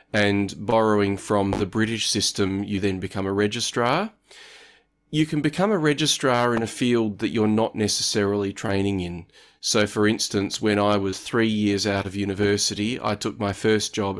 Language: English